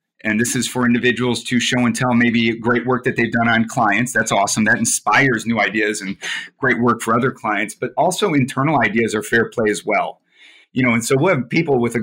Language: English